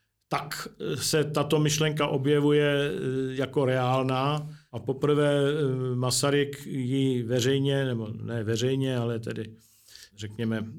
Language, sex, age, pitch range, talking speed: Slovak, male, 50-69, 120-135 Hz, 100 wpm